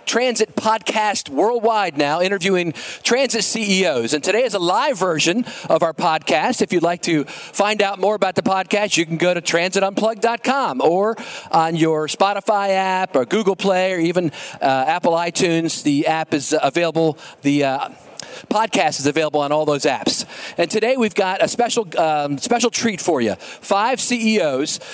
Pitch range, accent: 175-225 Hz, American